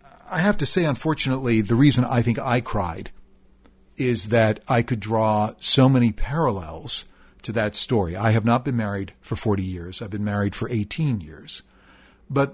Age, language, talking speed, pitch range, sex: 50-69, English, 175 wpm, 100-120 Hz, male